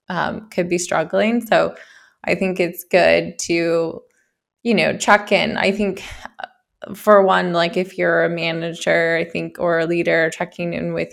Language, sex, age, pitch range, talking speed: English, female, 20-39, 170-200 Hz, 165 wpm